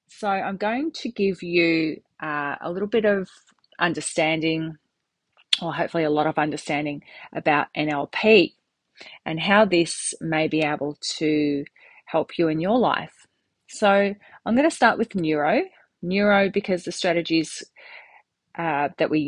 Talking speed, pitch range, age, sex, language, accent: 145 wpm, 155-200 Hz, 30-49, female, English, Australian